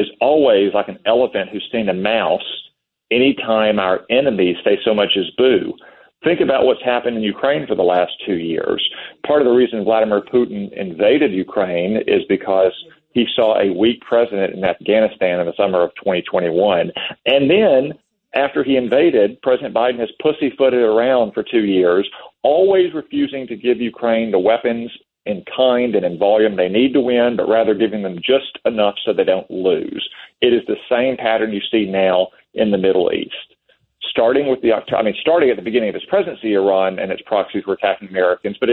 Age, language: 40-59, English